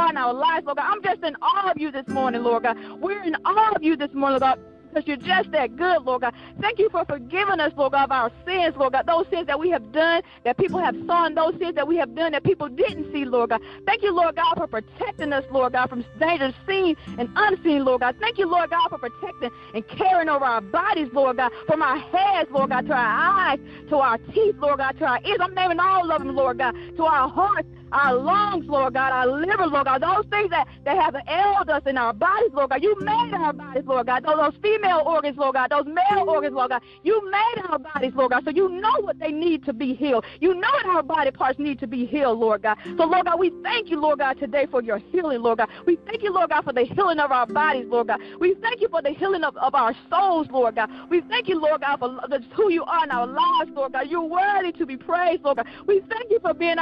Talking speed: 260 wpm